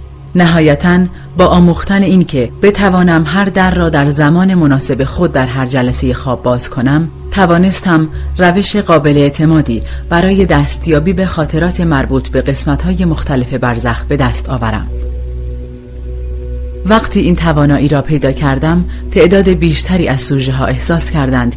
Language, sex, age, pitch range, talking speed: Persian, female, 30-49, 125-170 Hz, 135 wpm